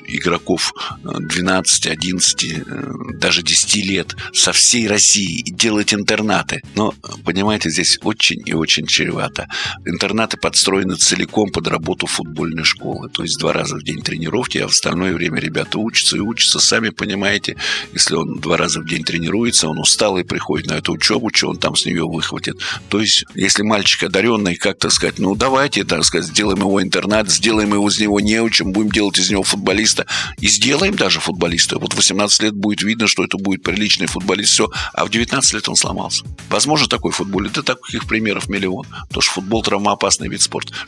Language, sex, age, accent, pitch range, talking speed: Russian, male, 50-69, native, 95-115 Hz, 180 wpm